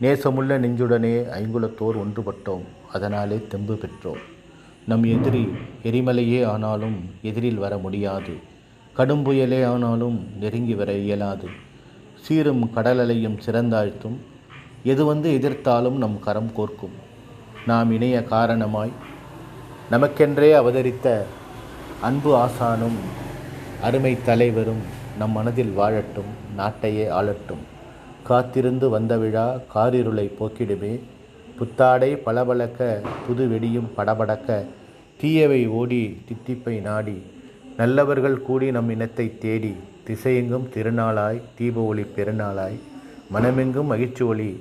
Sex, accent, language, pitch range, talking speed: male, native, Tamil, 110-125 Hz, 90 wpm